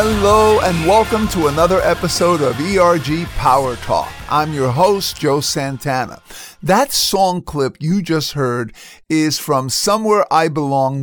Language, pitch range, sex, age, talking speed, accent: English, 130-175 Hz, male, 50-69, 140 wpm, American